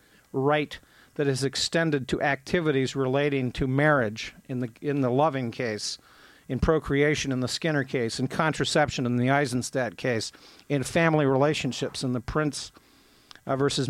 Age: 50-69